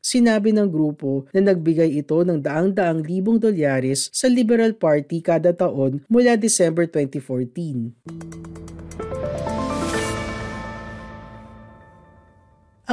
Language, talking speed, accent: Filipino, 85 wpm, native